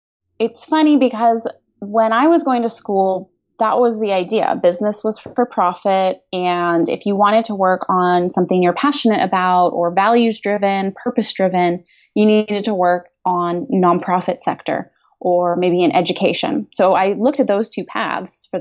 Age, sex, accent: 20-39, female, American